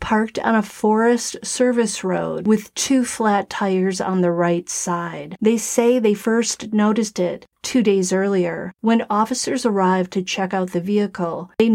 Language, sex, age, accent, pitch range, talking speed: English, female, 40-59, American, 185-215 Hz, 165 wpm